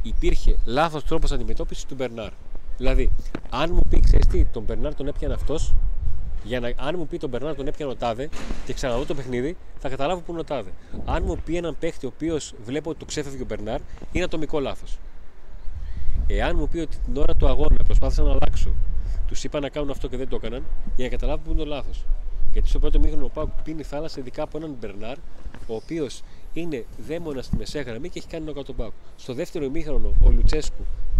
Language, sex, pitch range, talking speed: Greek, male, 100-160 Hz, 200 wpm